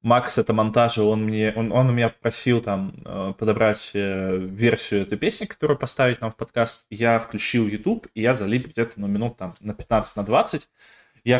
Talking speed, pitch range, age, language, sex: 170 wpm, 110-135 Hz, 20-39, Russian, male